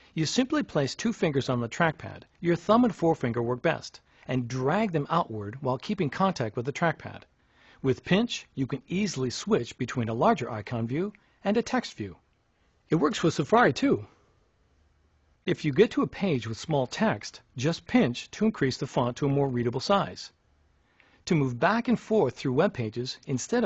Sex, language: male, Hungarian